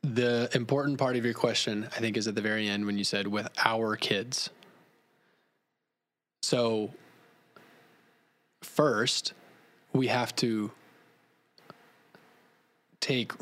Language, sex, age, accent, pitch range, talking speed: English, male, 20-39, American, 110-130 Hz, 110 wpm